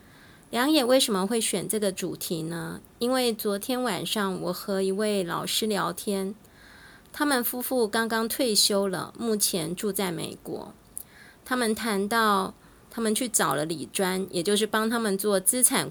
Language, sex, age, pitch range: Chinese, female, 20-39, 195-245 Hz